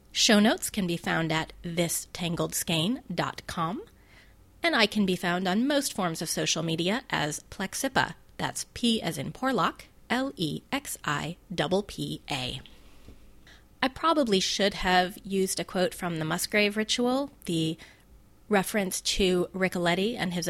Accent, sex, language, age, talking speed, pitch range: American, female, English, 30-49, 125 wpm, 165-215 Hz